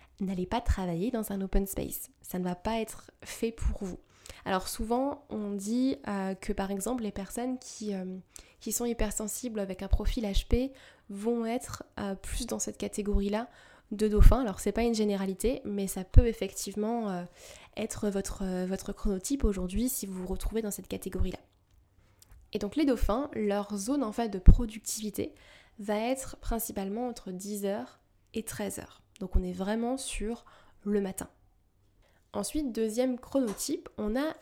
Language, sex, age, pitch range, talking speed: French, female, 10-29, 195-235 Hz, 160 wpm